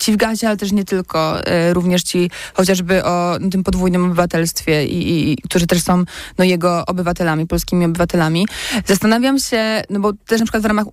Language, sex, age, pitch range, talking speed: Polish, female, 20-39, 170-195 Hz, 180 wpm